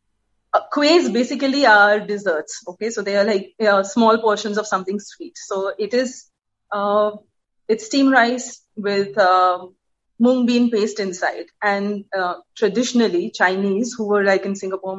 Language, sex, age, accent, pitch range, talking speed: Hindi, female, 30-49, native, 205-245 Hz, 150 wpm